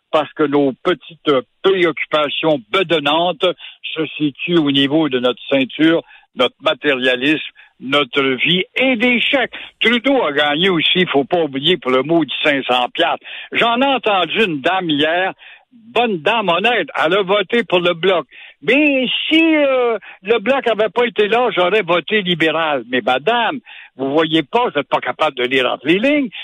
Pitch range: 150-220 Hz